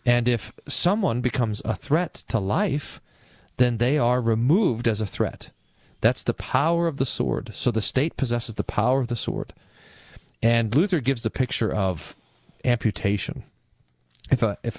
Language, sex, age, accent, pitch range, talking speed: English, male, 40-59, American, 95-120 Hz, 160 wpm